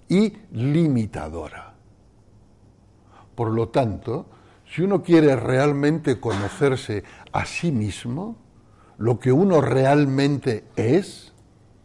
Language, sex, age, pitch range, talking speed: Spanish, male, 60-79, 105-145 Hz, 90 wpm